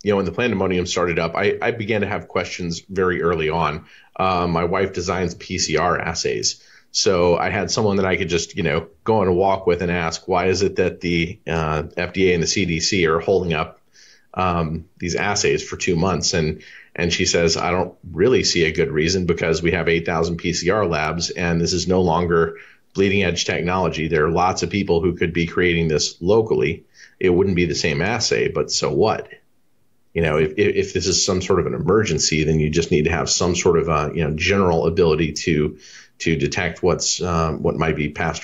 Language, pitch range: English, 80-95 Hz